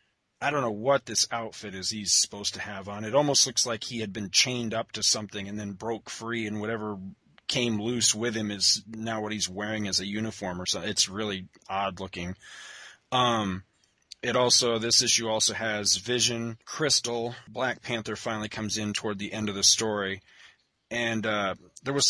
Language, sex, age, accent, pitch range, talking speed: English, male, 30-49, American, 105-125 Hz, 190 wpm